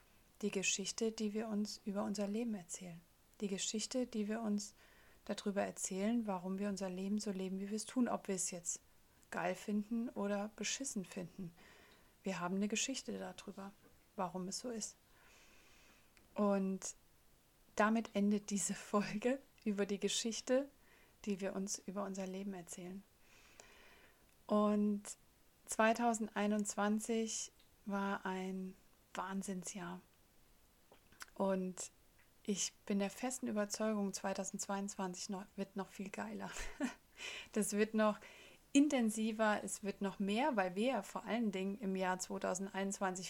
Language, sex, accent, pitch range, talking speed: German, female, German, 195-220 Hz, 125 wpm